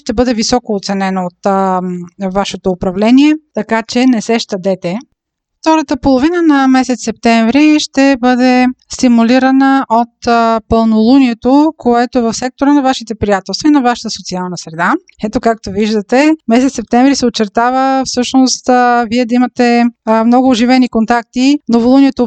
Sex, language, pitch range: female, Bulgarian, 220-260 Hz